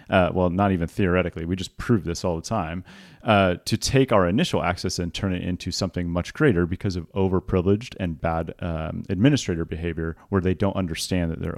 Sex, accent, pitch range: male, American, 85-100 Hz